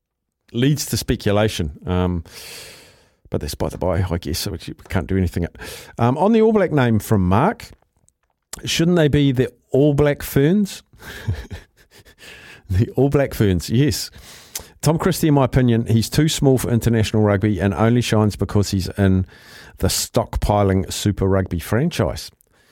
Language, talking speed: English, 150 wpm